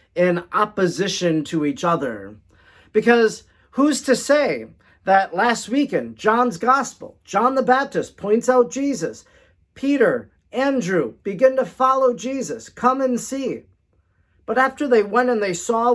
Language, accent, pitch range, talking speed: English, American, 155-235 Hz, 135 wpm